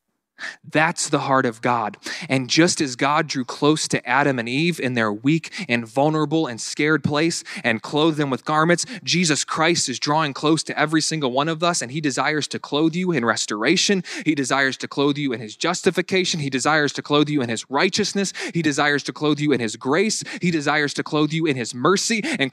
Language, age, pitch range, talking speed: English, 20-39, 135-175 Hz, 215 wpm